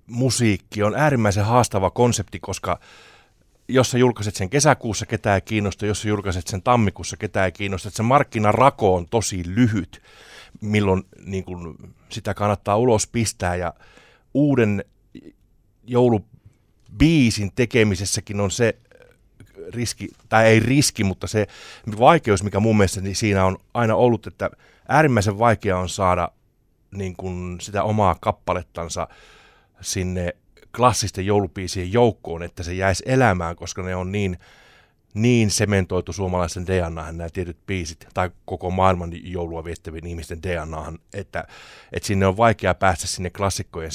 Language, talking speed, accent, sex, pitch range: Finnish, 130 wpm, native, male, 90-110 Hz